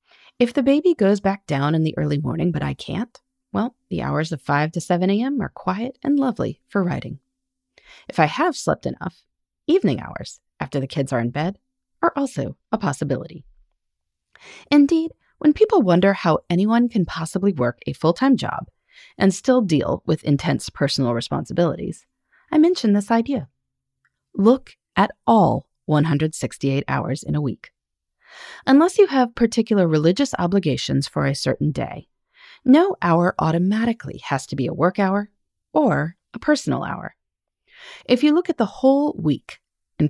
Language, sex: English, female